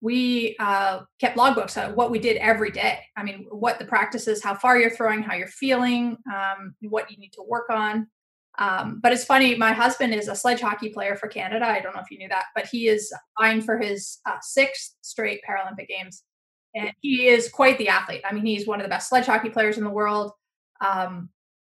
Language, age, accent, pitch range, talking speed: English, 30-49, American, 210-245 Hz, 230 wpm